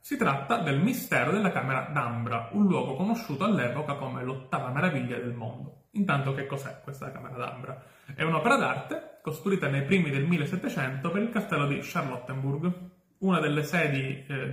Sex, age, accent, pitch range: male, 30-49, native, 130-180 Hz